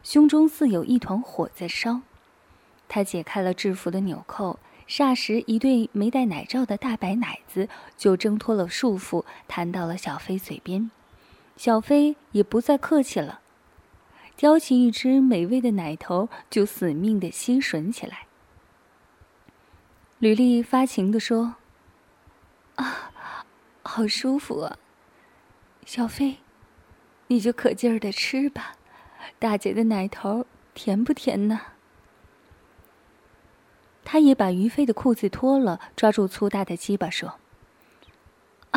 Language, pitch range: Chinese, 200-265 Hz